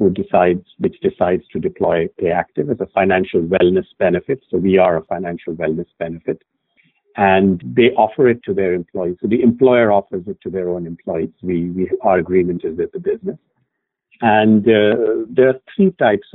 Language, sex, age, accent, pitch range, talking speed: English, male, 60-79, Indian, 95-125 Hz, 185 wpm